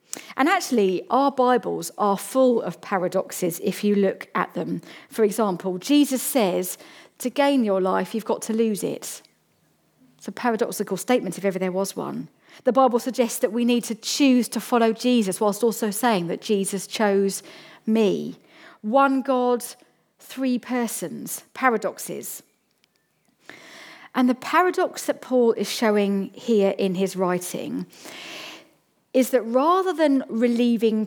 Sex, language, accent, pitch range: female, English, British, 200-255 Hz